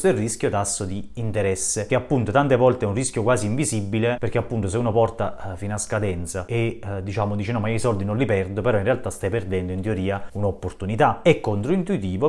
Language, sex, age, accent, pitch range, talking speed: Italian, male, 30-49, native, 100-120 Hz, 215 wpm